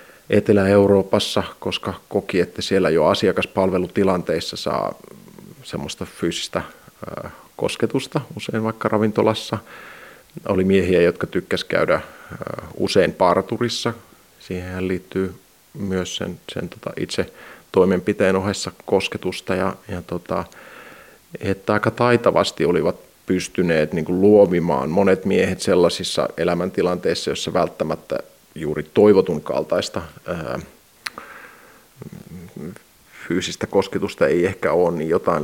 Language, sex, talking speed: Finnish, male, 100 wpm